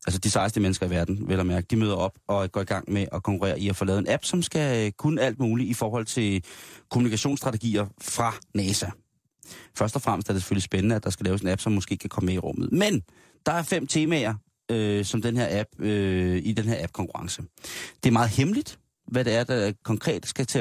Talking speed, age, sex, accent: 240 wpm, 30-49, male, native